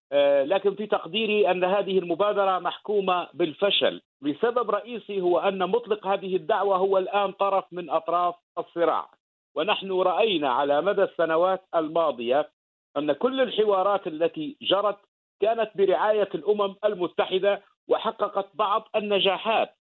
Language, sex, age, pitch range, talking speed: English, male, 50-69, 170-210 Hz, 115 wpm